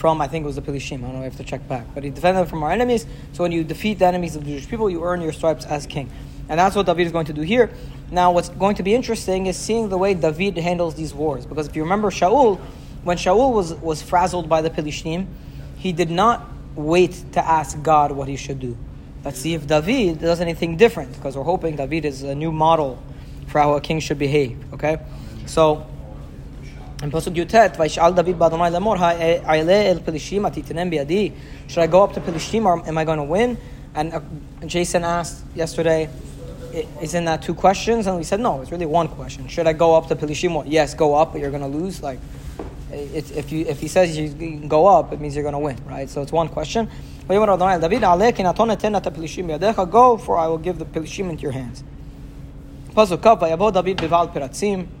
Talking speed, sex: 195 wpm, male